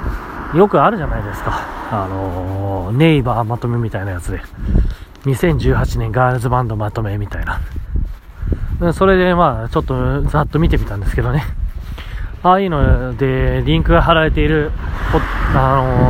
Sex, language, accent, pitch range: male, Japanese, native, 95-145 Hz